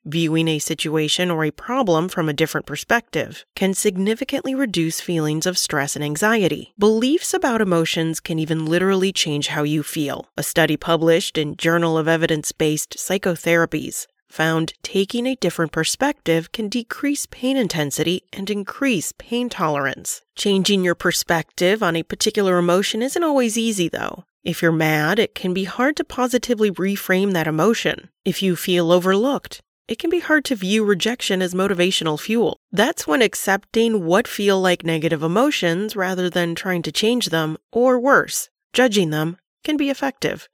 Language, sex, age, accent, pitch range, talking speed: English, female, 30-49, American, 160-215 Hz, 160 wpm